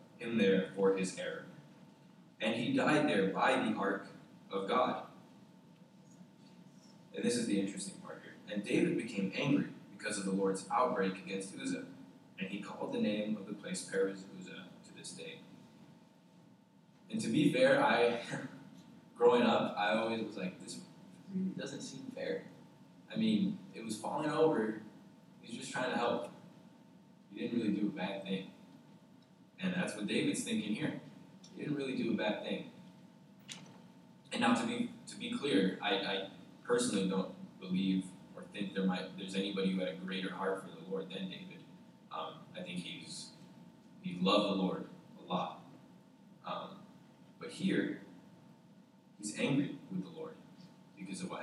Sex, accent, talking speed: male, American, 165 wpm